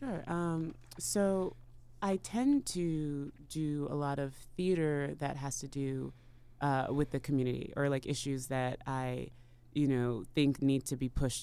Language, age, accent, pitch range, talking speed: English, 20-39, American, 120-140 Hz, 155 wpm